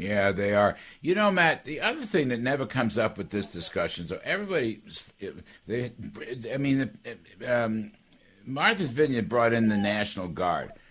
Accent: American